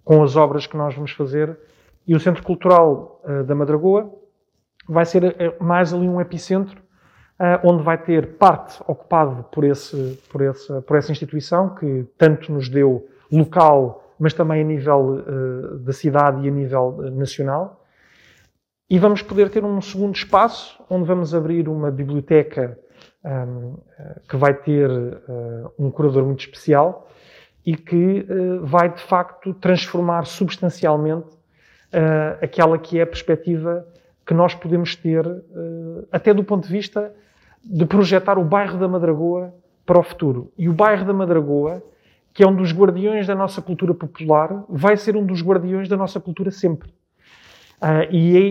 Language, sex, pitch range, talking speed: Portuguese, male, 150-185 Hz, 155 wpm